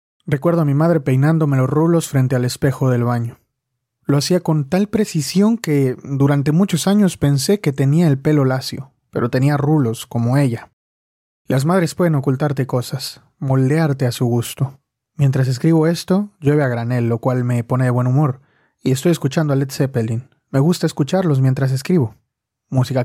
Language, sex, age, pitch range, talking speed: Spanish, male, 30-49, 130-155 Hz, 170 wpm